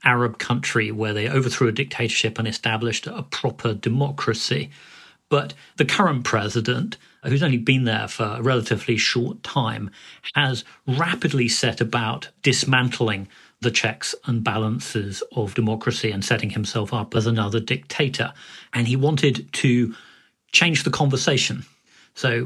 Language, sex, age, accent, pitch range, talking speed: English, male, 40-59, British, 110-135 Hz, 135 wpm